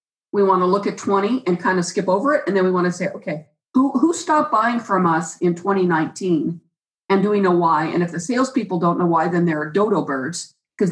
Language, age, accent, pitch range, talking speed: English, 40-59, American, 180-220 Hz, 245 wpm